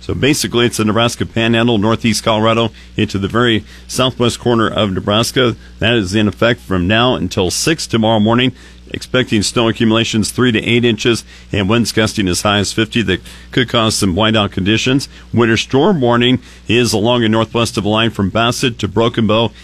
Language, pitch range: English, 100-120 Hz